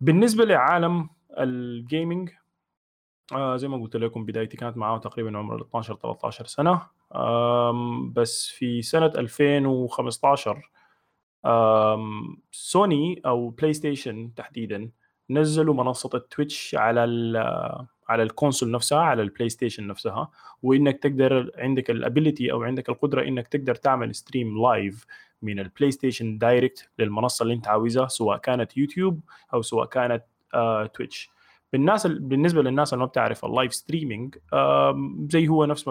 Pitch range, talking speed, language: 115-150 Hz, 125 wpm, Arabic